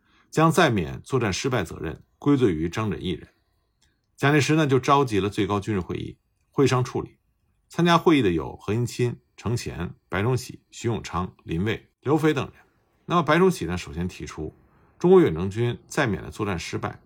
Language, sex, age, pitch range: Chinese, male, 50-69, 95-150 Hz